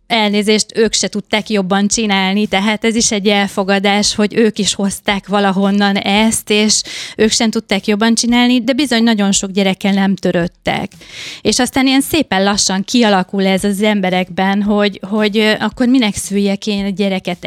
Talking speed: 160 wpm